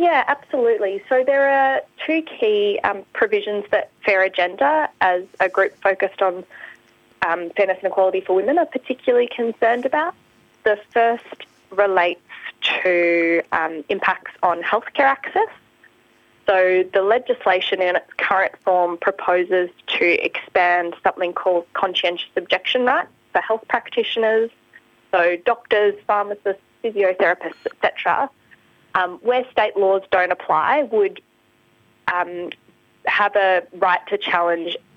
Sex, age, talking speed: female, 20-39, 125 wpm